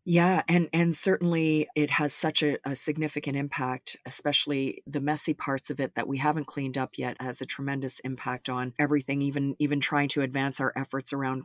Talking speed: 195 wpm